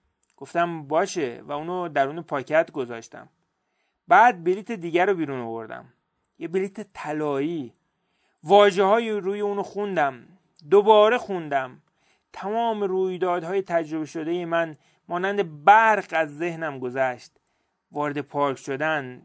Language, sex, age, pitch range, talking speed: Persian, male, 40-59, 150-190 Hz, 115 wpm